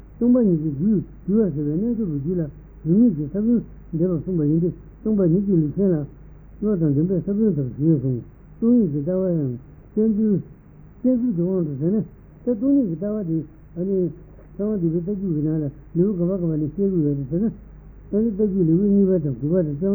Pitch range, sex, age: 150-205 Hz, male, 60-79